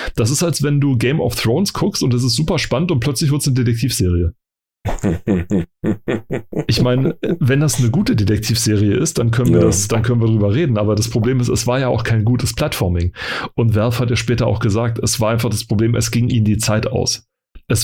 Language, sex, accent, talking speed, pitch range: German, male, German, 215 wpm, 105-125 Hz